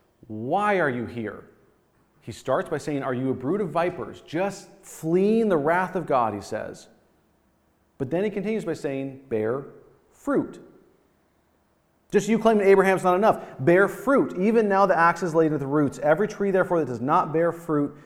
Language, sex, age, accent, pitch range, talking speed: English, male, 40-59, American, 135-195 Hz, 185 wpm